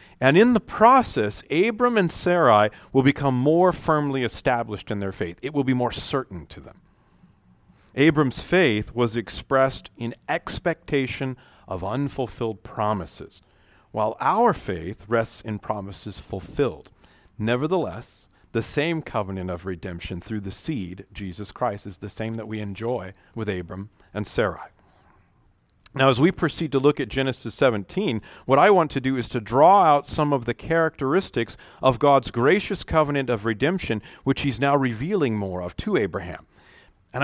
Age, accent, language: 40-59, American, English